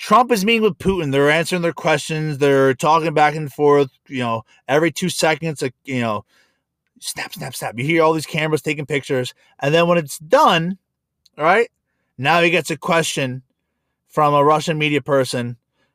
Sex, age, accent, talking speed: male, 20-39, American, 180 wpm